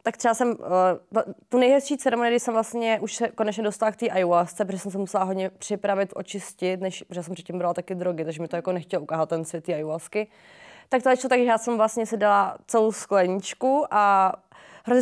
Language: Czech